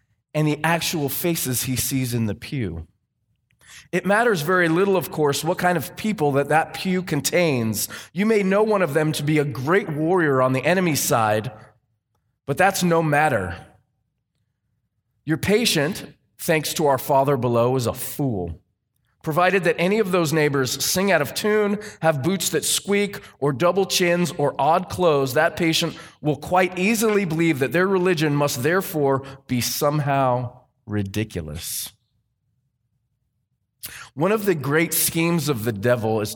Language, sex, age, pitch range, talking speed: English, male, 20-39, 125-180 Hz, 155 wpm